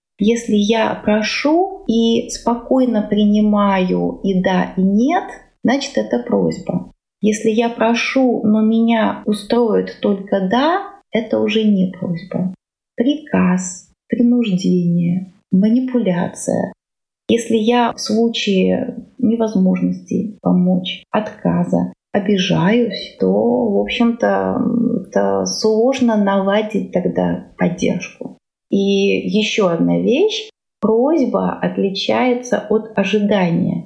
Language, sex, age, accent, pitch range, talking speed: Russian, female, 30-49, native, 185-235 Hz, 90 wpm